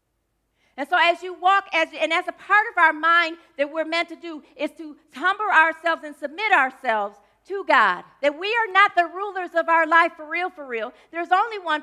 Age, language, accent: 40-59, English, American